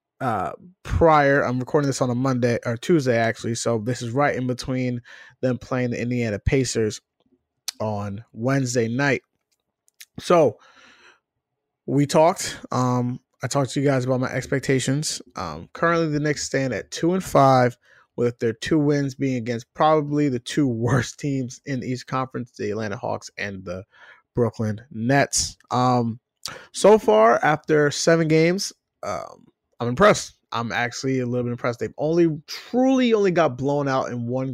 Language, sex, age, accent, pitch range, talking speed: English, male, 20-39, American, 120-145 Hz, 160 wpm